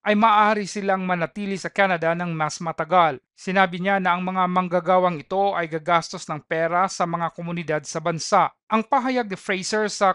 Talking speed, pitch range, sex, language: 175 wpm, 170-200 Hz, male, Filipino